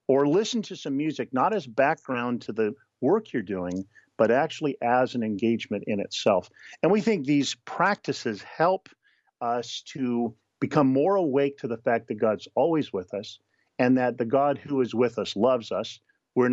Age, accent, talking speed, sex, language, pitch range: 50-69, American, 180 wpm, male, English, 120-160 Hz